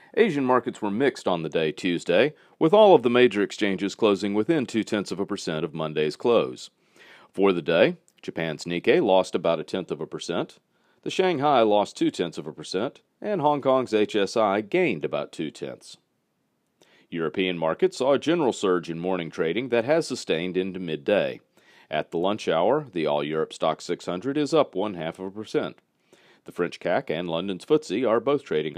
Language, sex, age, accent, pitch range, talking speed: English, male, 40-59, American, 90-125 Hz, 180 wpm